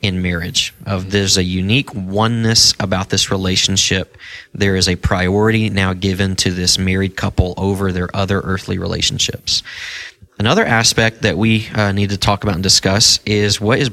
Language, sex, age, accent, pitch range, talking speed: English, male, 20-39, American, 95-115 Hz, 170 wpm